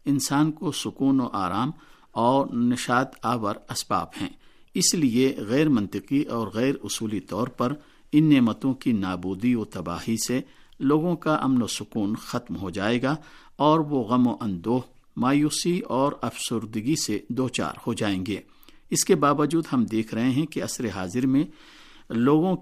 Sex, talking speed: male, 160 wpm